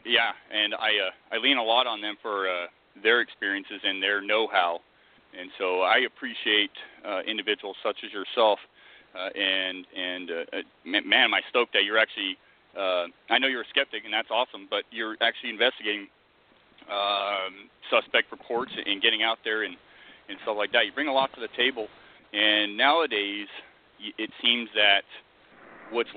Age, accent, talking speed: 40-59, American, 175 wpm